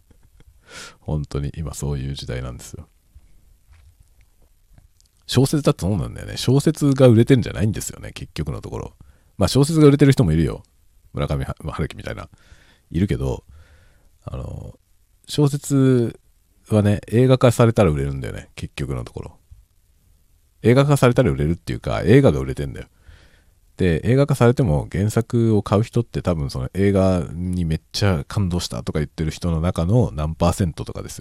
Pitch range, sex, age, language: 80-105 Hz, male, 40-59, Japanese